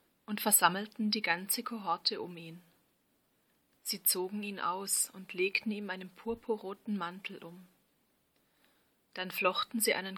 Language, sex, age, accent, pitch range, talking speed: German, female, 30-49, German, 180-210 Hz, 130 wpm